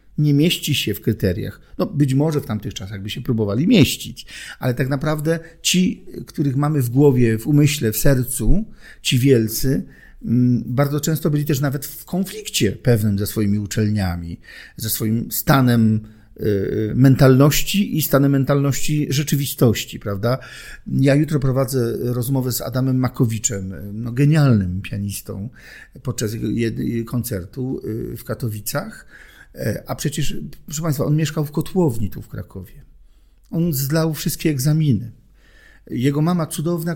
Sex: male